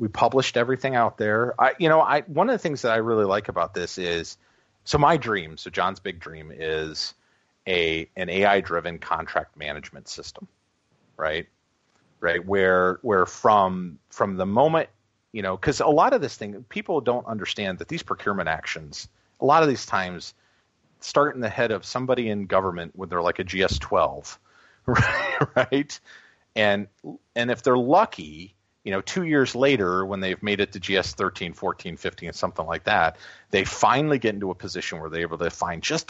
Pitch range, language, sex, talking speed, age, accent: 85-120 Hz, English, male, 190 wpm, 40-59, American